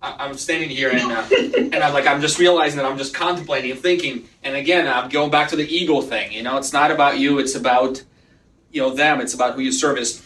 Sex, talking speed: male, 245 wpm